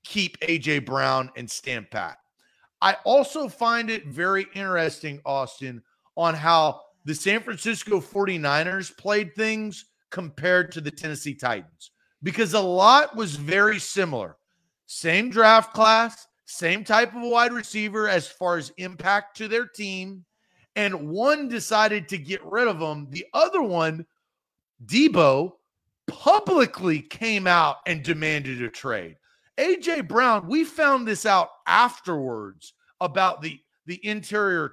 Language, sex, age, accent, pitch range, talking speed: English, male, 30-49, American, 155-225 Hz, 135 wpm